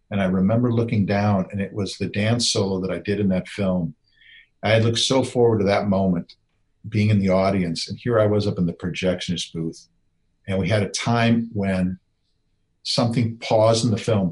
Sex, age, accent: male, 50-69, American